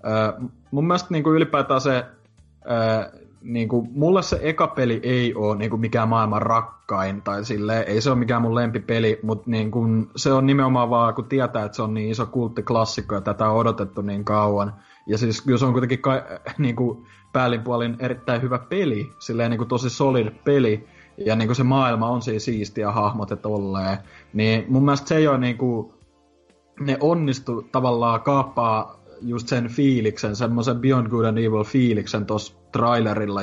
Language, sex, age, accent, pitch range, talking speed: Finnish, male, 20-39, native, 105-130 Hz, 165 wpm